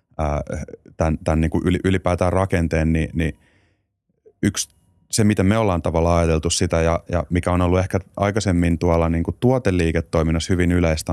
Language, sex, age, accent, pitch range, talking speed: Finnish, male, 30-49, native, 80-95 Hz, 150 wpm